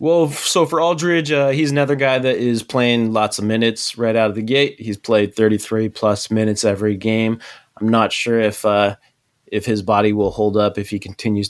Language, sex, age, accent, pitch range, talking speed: English, male, 20-39, American, 100-120 Hz, 205 wpm